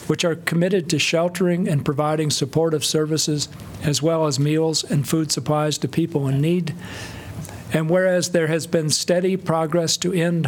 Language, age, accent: English, 50-69, American